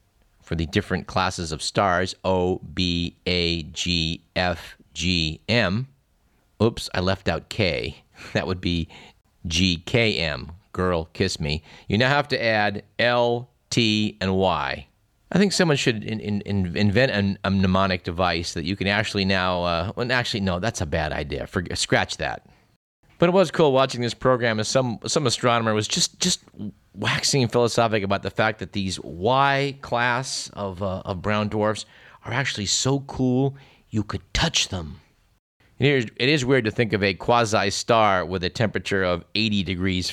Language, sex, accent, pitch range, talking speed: English, male, American, 90-120 Hz, 165 wpm